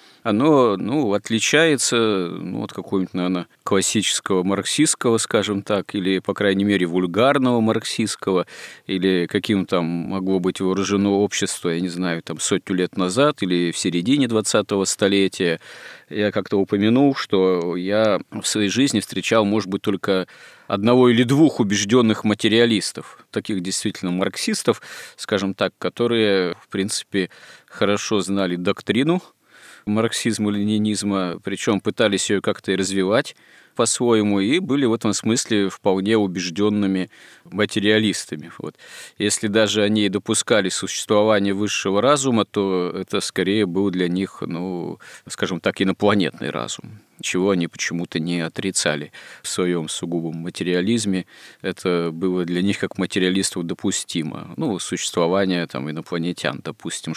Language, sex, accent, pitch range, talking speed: Russian, male, native, 90-105 Hz, 125 wpm